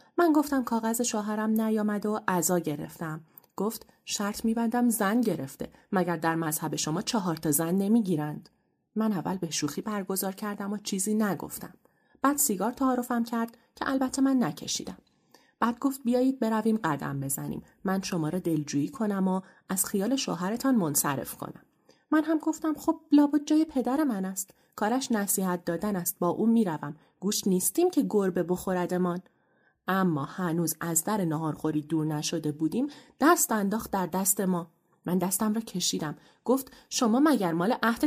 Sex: female